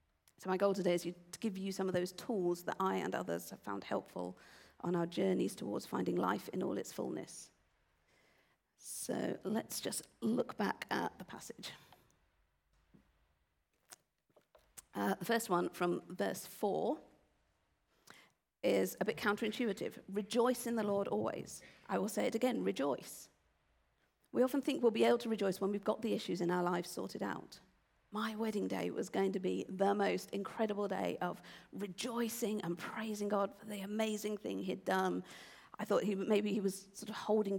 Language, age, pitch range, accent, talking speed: English, 50-69, 175-215 Hz, British, 170 wpm